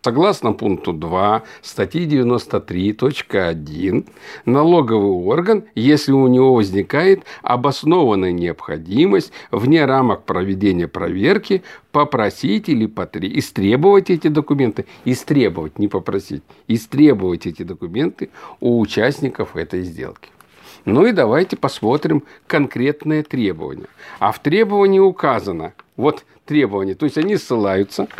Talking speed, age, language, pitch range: 100 wpm, 50-69, Russian, 100-155 Hz